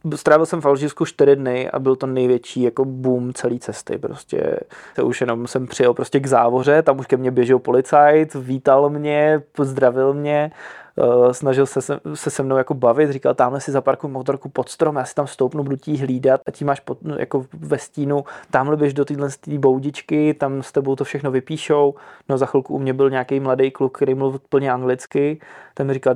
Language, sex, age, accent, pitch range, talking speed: Czech, male, 20-39, native, 130-145 Hz, 205 wpm